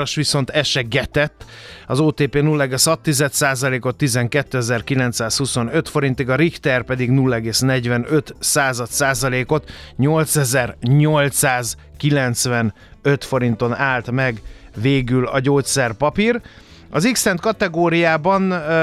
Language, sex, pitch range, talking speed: Hungarian, male, 125-150 Hz, 70 wpm